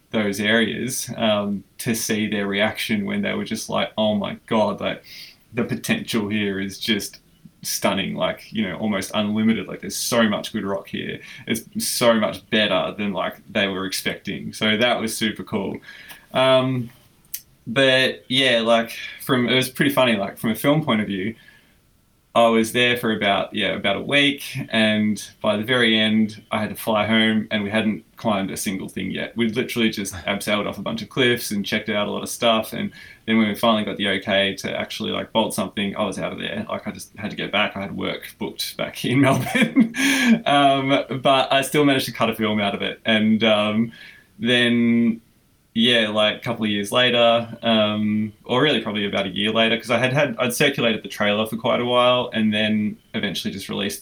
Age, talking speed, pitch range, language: 20-39, 205 wpm, 105-125 Hz, English